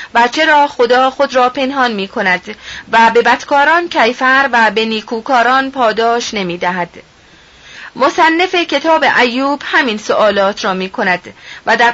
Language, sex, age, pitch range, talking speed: Persian, female, 30-49, 220-285 Hz, 135 wpm